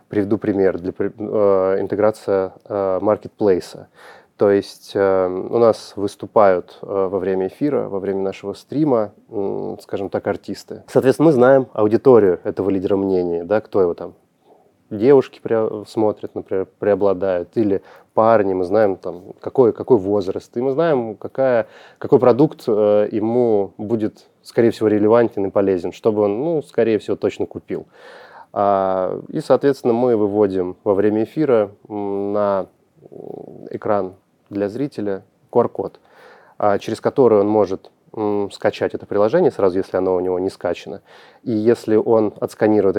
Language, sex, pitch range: Russian, male, 95-115 Hz